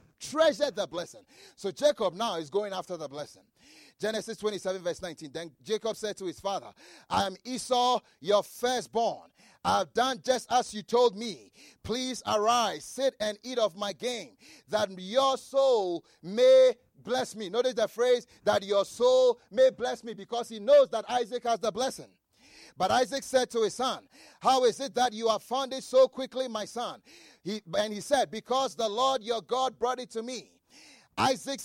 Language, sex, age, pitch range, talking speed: English, male, 30-49, 215-265 Hz, 180 wpm